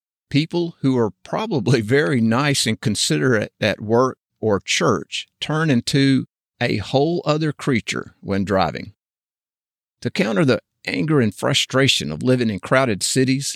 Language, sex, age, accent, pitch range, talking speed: English, male, 50-69, American, 105-140 Hz, 135 wpm